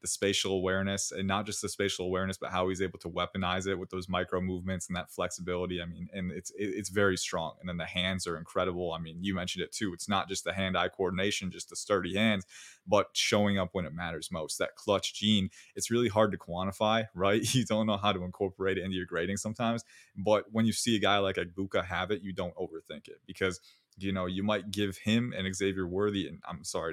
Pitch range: 90-105 Hz